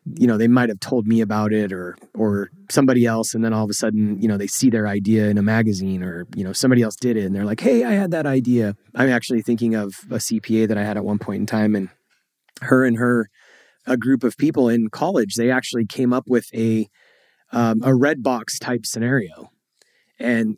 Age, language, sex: 30-49, English, male